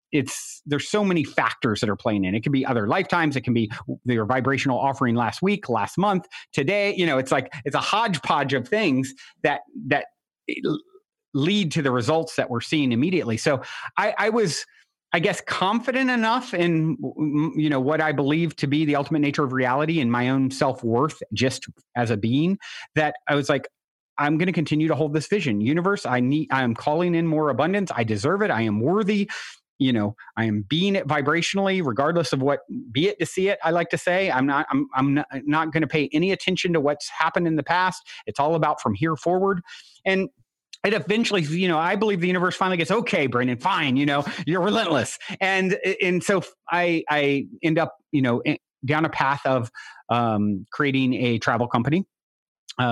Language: English